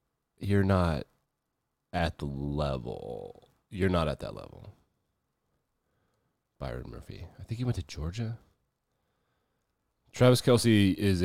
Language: English